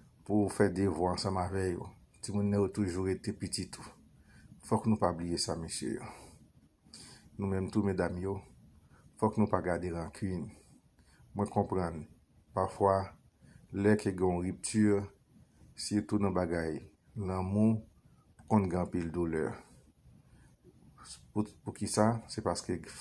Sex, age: male, 50-69